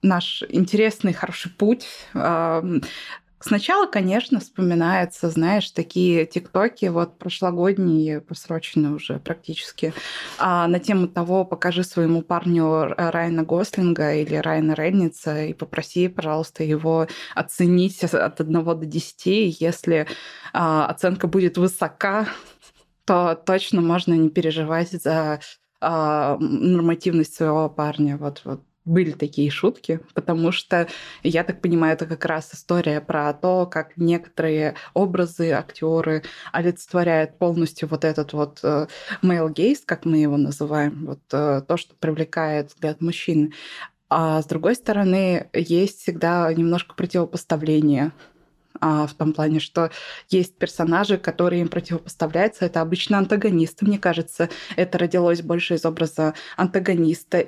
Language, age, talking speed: Russian, 20-39, 120 wpm